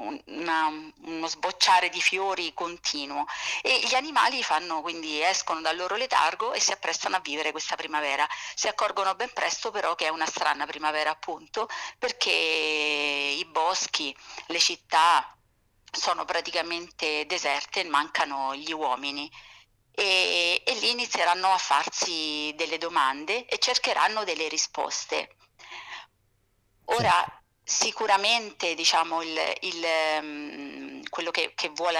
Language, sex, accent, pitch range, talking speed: Italian, female, native, 155-190 Hz, 125 wpm